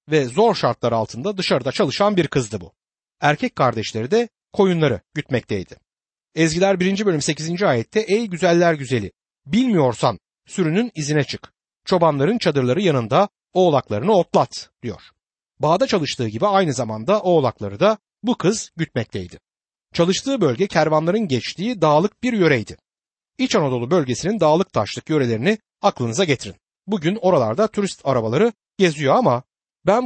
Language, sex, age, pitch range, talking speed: Turkish, male, 60-79, 125-205 Hz, 130 wpm